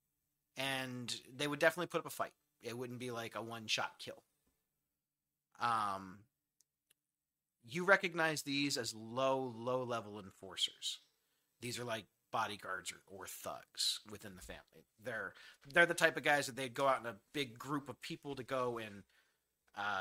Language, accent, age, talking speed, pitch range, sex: English, American, 30-49, 165 wpm, 110-145 Hz, male